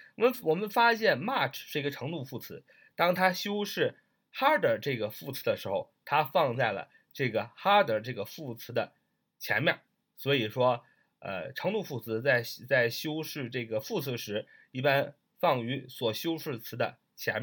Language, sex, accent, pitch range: Chinese, male, native, 120-185 Hz